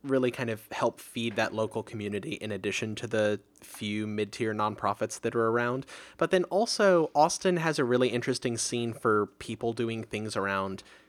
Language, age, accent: English, 20-39, American